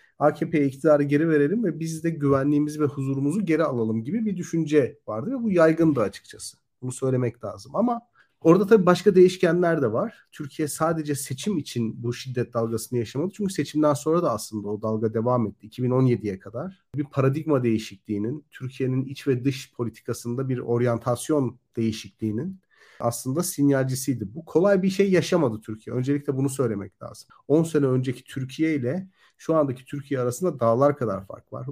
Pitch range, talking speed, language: 120-155 Hz, 160 wpm, Turkish